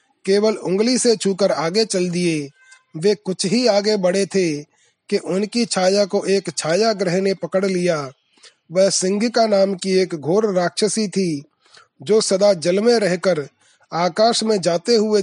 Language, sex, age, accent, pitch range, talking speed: Hindi, male, 30-49, native, 180-215 Hz, 150 wpm